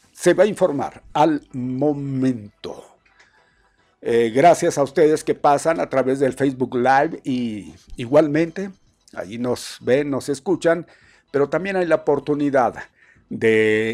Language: Spanish